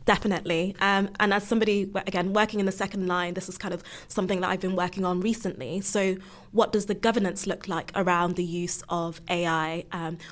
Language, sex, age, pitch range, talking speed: English, female, 20-39, 175-195 Hz, 205 wpm